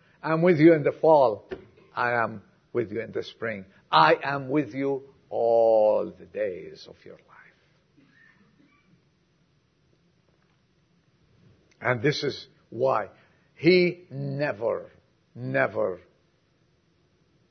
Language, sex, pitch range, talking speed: English, male, 140-220 Hz, 105 wpm